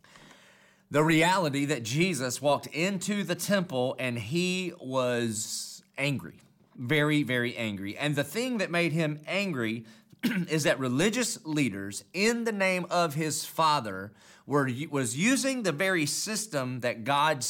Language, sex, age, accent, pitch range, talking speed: English, male, 40-59, American, 115-160 Hz, 135 wpm